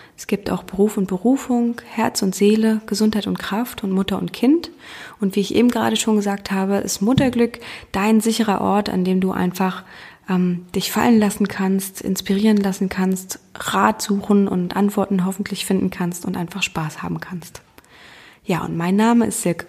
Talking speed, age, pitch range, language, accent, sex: 180 wpm, 20-39, 185-220 Hz, German, German, female